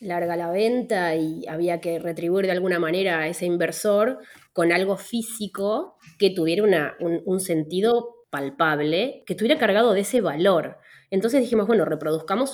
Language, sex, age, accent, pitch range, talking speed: Spanish, female, 20-39, Argentinian, 170-225 Hz, 160 wpm